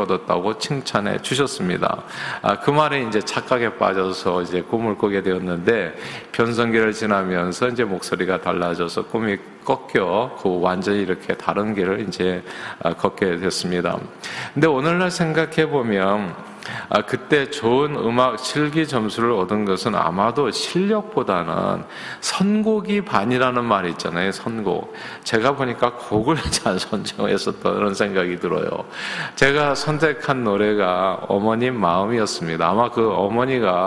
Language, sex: Korean, male